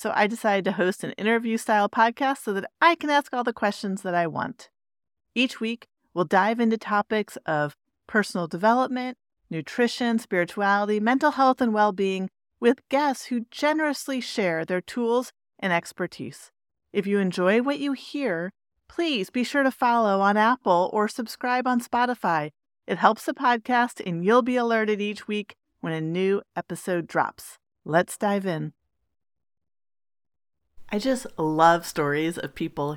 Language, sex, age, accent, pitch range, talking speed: English, female, 40-59, American, 170-230 Hz, 155 wpm